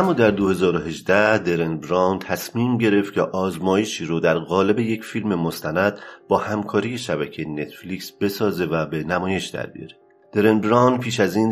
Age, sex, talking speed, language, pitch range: 40-59, male, 140 wpm, Persian, 85-110 Hz